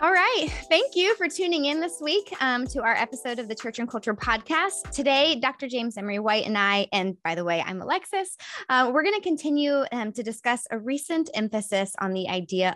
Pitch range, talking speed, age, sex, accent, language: 195-255 Hz, 210 wpm, 20-39, female, American, English